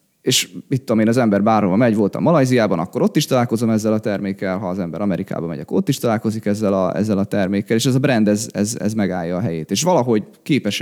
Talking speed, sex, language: 235 wpm, male, Hungarian